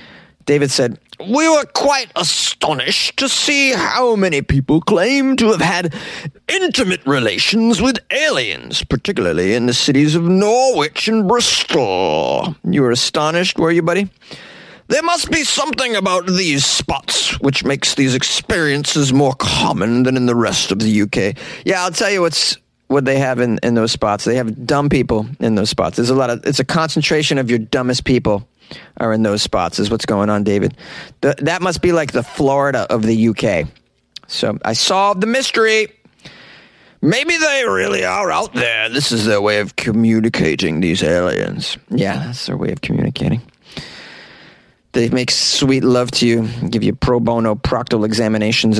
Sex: male